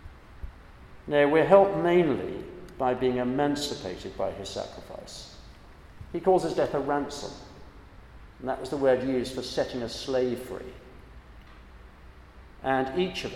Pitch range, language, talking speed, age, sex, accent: 90-140 Hz, English, 135 wpm, 50-69, male, British